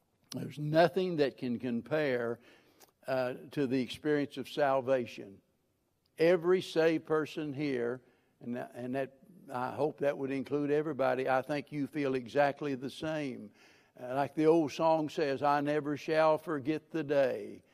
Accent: American